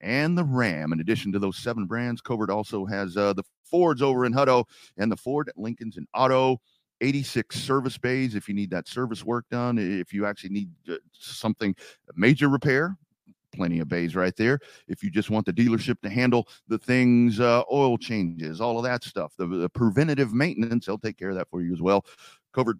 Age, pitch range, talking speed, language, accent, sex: 40-59, 105-135 Hz, 205 wpm, English, American, male